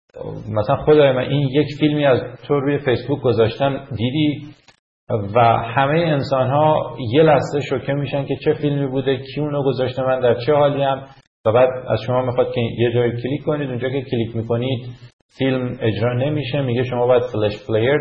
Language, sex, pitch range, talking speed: English, male, 120-150 Hz, 180 wpm